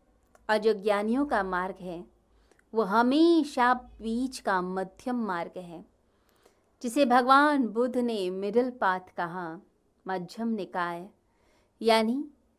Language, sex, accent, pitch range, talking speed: Hindi, female, native, 190-255 Hz, 100 wpm